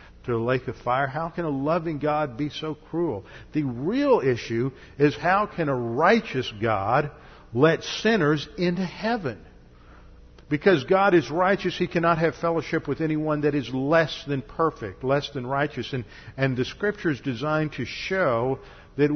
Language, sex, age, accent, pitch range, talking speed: English, male, 50-69, American, 125-155 Hz, 165 wpm